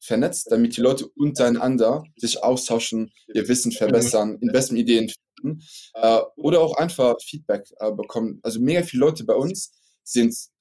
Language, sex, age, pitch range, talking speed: German, male, 20-39, 115-140 Hz, 145 wpm